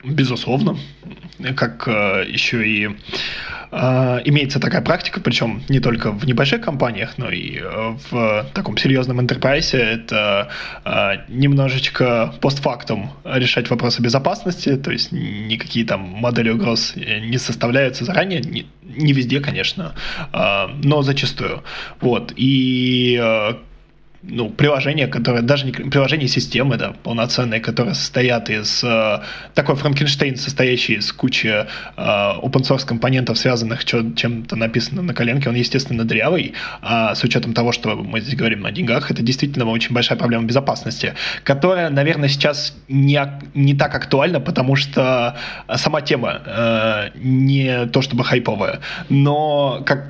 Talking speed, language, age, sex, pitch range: 130 wpm, Russian, 20-39, male, 120-140 Hz